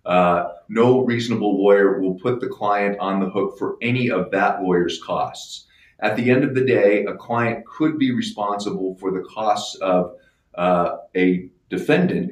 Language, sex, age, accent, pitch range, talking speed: English, male, 40-59, American, 95-115 Hz, 170 wpm